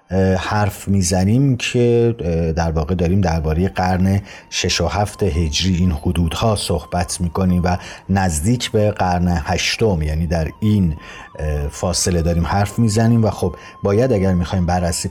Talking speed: 135 wpm